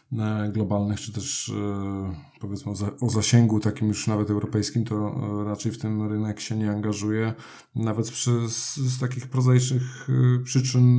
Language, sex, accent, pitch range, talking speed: Polish, male, native, 105-125 Hz, 130 wpm